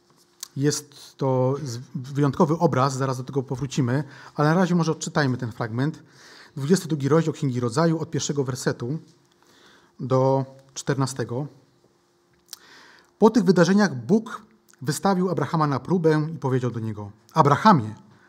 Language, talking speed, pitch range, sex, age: Polish, 120 wpm, 130-165 Hz, male, 30-49